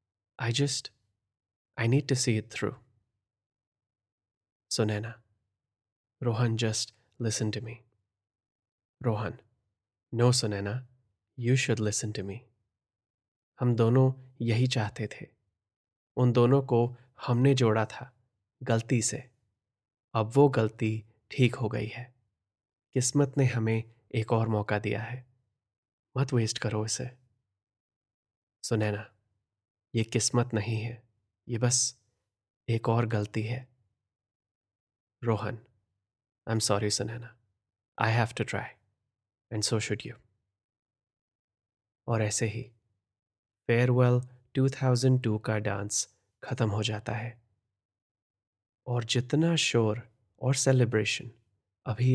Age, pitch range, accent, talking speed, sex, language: 20-39, 105-120 Hz, native, 110 wpm, male, Hindi